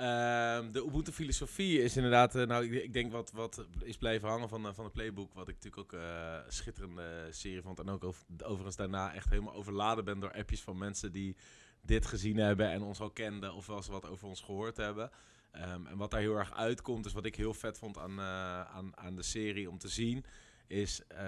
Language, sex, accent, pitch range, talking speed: Dutch, male, Dutch, 95-110 Hz, 230 wpm